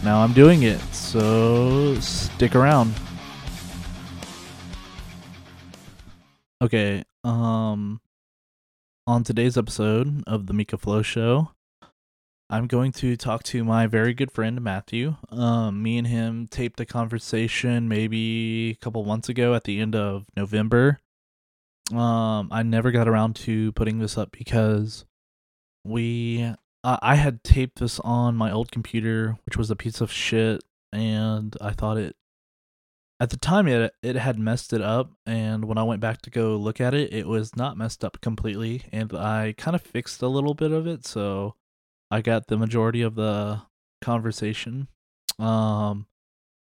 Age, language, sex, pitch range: 20-39, English, male, 105-120 Hz